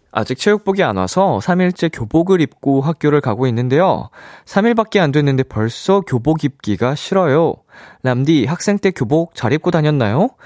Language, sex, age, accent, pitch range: Korean, male, 20-39, native, 95-160 Hz